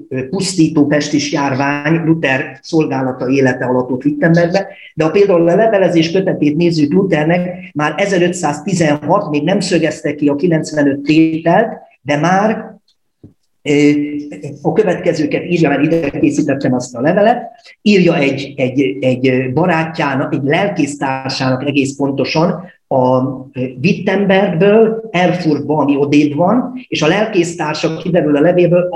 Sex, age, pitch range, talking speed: male, 40-59, 145-180 Hz, 120 wpm